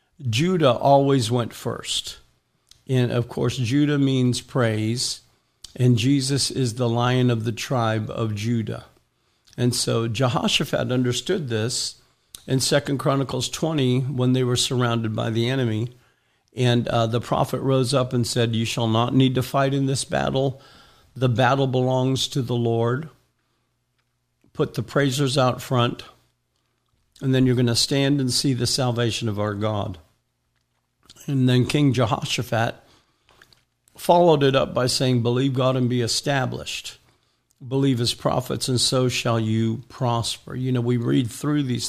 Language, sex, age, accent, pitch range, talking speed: English, male, 50-69, American, 115-135 Hz, 150 wpm